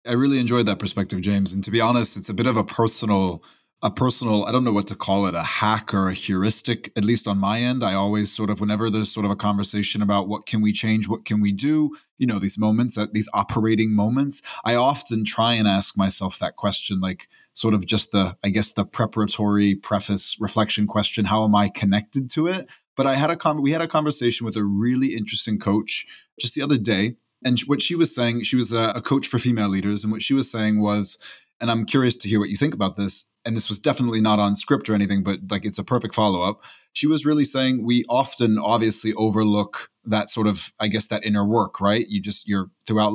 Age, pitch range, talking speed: 20-39, 100-120 Hz, 235 wpm